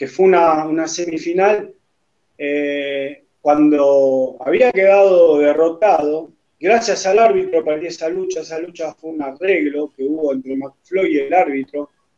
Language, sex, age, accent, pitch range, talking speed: English, male, 30-49, Argentinian, 145-200 Hz, 140 wpm